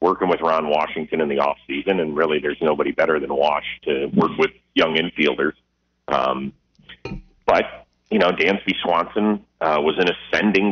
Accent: American